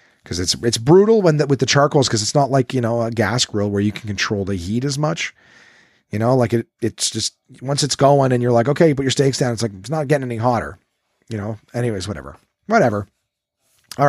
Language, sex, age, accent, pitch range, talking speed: English, male, 30-49, American, 110-145 Hz, 245 wpm